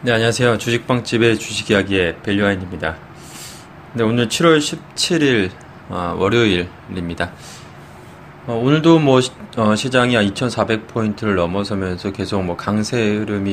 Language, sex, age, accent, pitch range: Korean, male, 20-39, native, 95-130 Hz